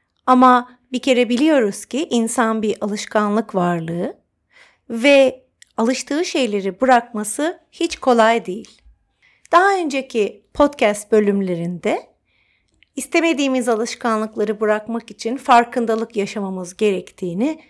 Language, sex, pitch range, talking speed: Turkish, female, 210-290 Hz, 90 wpm